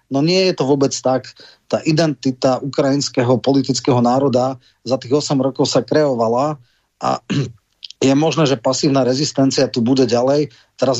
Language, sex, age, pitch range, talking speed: Slovak, male, 30-49, 125-145 Hz, 145 wpm